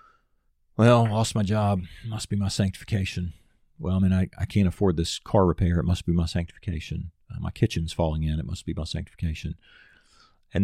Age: 40-59